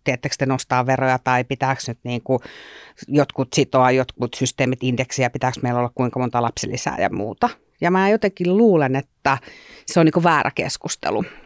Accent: native